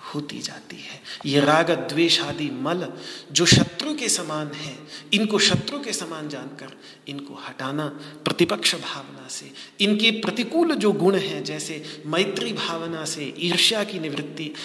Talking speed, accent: 140 wpm, native